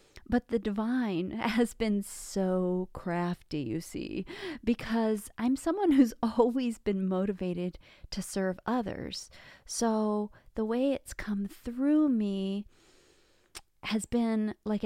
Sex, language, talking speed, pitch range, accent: female, English, 115 wpm, 190-240 Hz, American